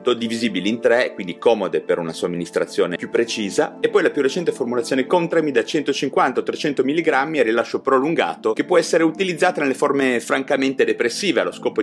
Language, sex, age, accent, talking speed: Italian, male, 30-49, native, 165 wpm